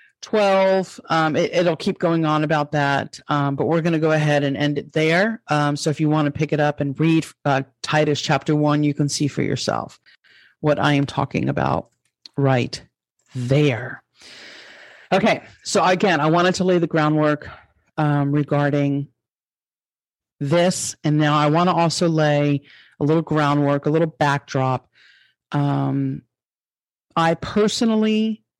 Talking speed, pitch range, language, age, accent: 155 wpm, 145-165 Hz, English, 40-59, American